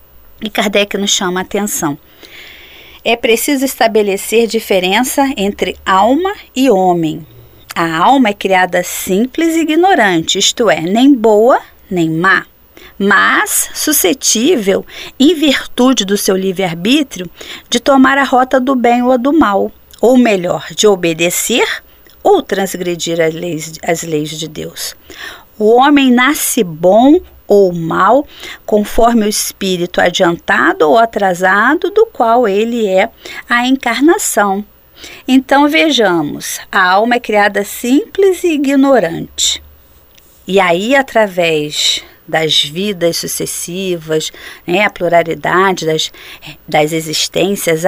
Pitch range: 175-255 Hz